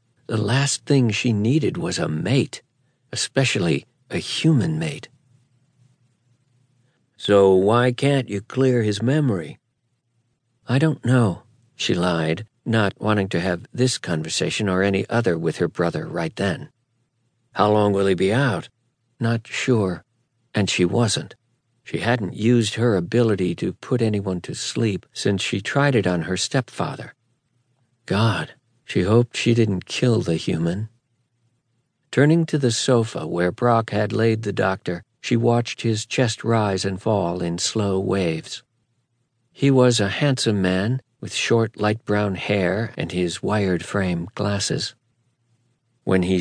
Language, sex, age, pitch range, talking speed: English, male, 60-79, 100-125 Hz, 145 wpm